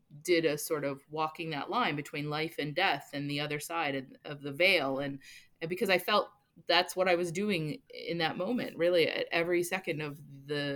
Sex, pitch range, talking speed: female, 145-180 Hz, 205 wpm